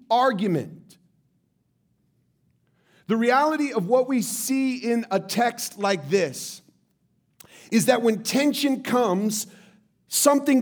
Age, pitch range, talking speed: 40-59, 210-270 Hz, 100 wpm